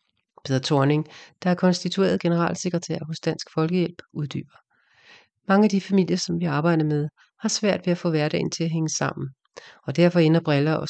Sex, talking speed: female, 180 wpm